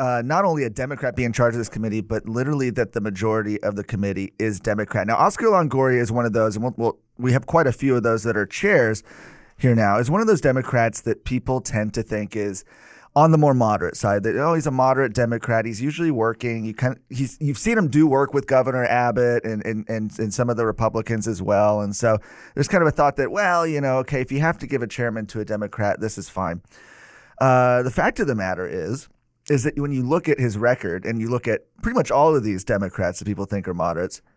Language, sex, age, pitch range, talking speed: English, male, 30-49, 110-135 Hz, 255 wpm